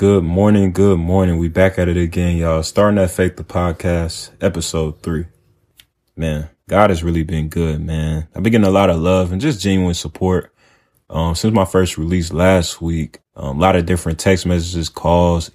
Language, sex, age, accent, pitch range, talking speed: English, male, 20-39, American, 80-95 Hz, 195 wpm